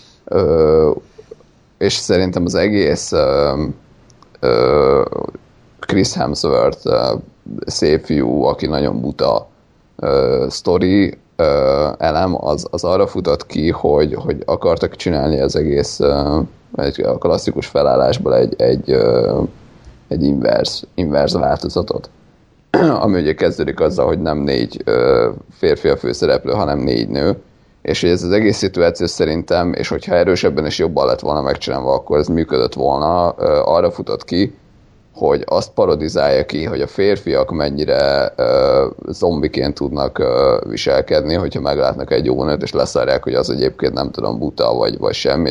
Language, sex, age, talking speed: Hungarian, male, 30-49, 135 wpm